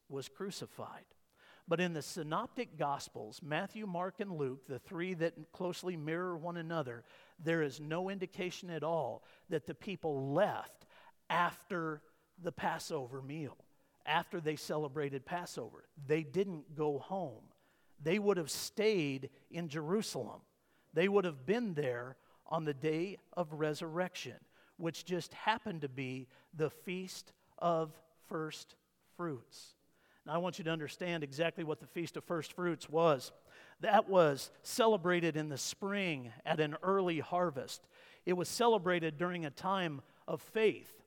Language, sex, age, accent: English, male, 50-69, American